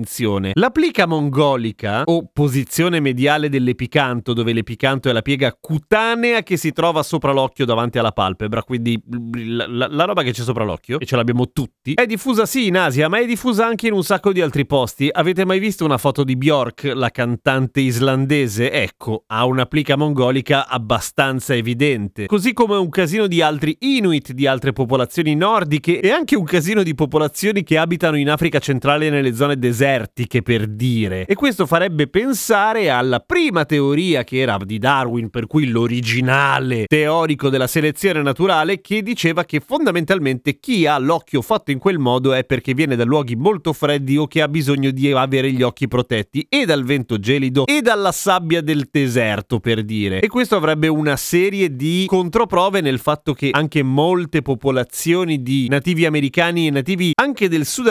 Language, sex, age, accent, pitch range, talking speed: Italian, male, 30-49, native, 130-175 Hz, 175 wpm